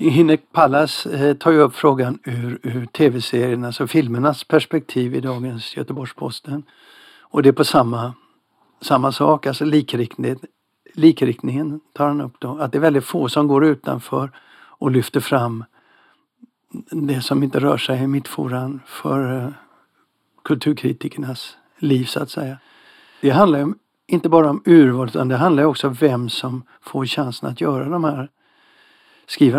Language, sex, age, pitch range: Swedish, male, 60-79, 130-160 Hz